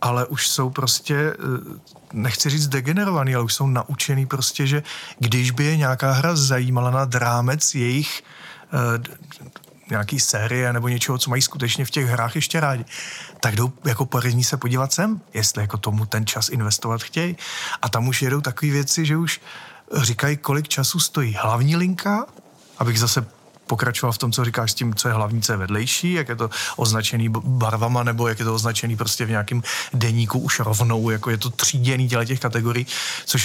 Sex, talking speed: male, 180 wpm